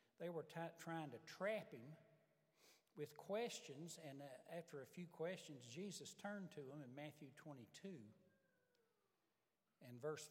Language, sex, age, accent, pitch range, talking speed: English, male, 60-79, American, 150-205 Hz, 135 wpm